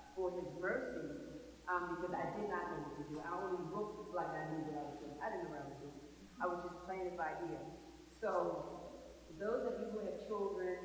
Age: 40-59